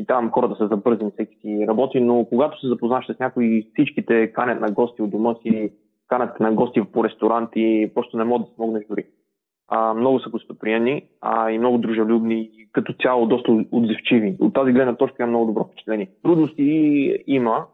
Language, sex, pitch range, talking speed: Bulgarian, male, 110-125 Hz, 180 wpm